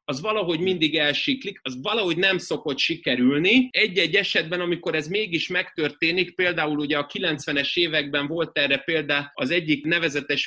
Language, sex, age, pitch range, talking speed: Hungarian, male, 30-49, 140-175 Hz, 150 wpm